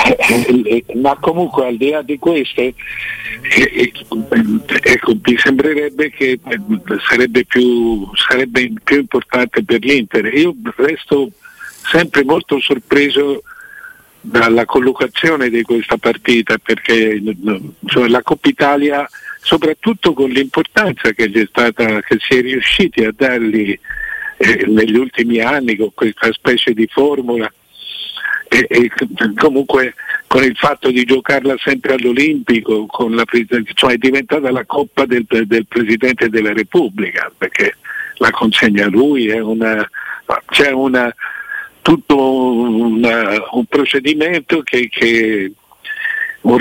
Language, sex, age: Italian, male, 50-69